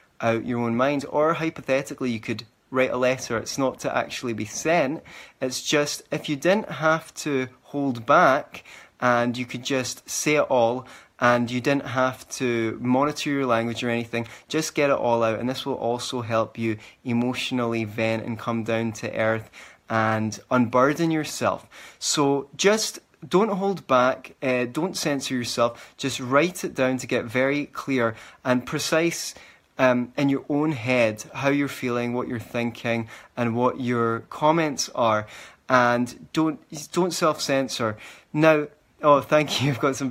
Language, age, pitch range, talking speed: English, 20-39, 115-140 Hz, 165 wpm